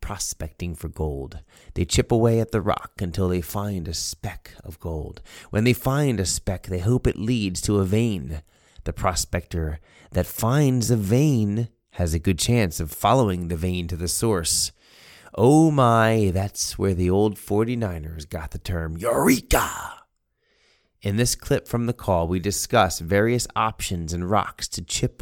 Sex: male